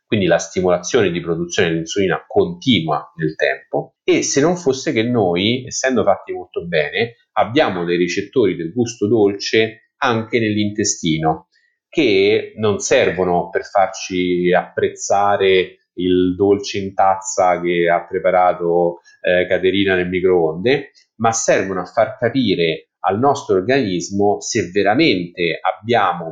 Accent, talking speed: native, 125 wpm